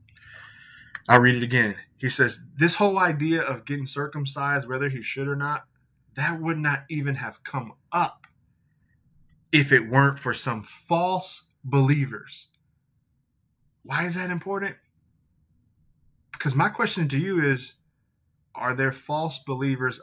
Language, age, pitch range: English, 20-39, 130-165 Hz